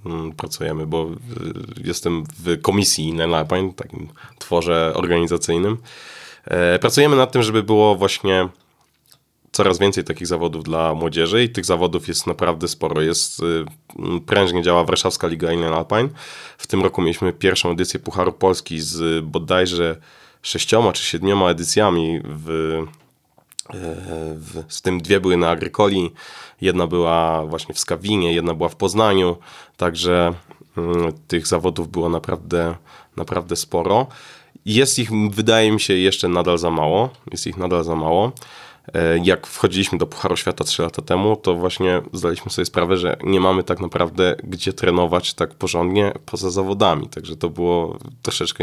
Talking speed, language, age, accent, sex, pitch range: 140 wpm, Polish, 20-39, native, male, 85-100 Hz